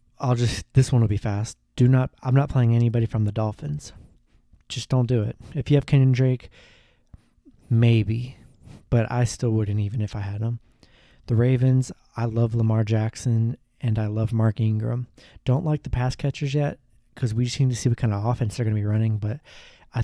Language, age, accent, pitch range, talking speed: English, 20-39, American, 110-125 Hz, 205 wpm